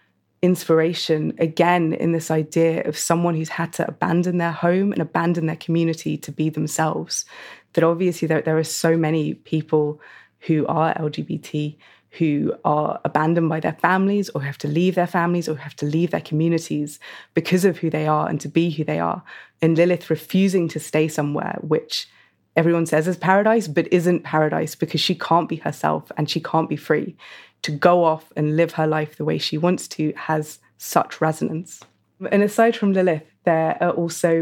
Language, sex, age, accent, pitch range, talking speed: English, female, 20-39, British, 155-180 Hz, 185 wpm